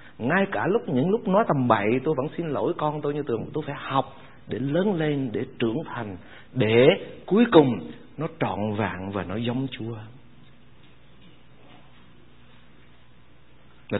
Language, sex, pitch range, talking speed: Vietnamese, male, 110-160 Hz, 155 wpm